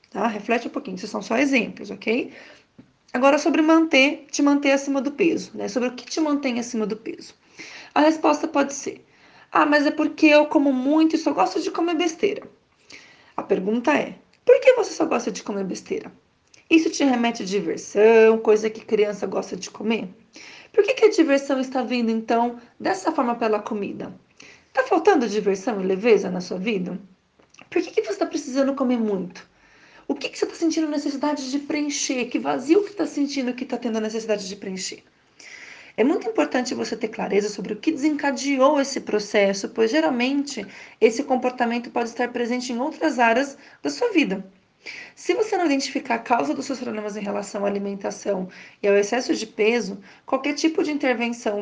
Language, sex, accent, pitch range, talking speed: Portuguese, female, Brazilian, 220-300 Hz, 185 wpm